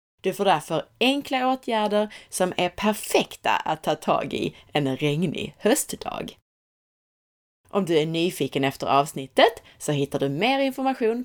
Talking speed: 140 wpm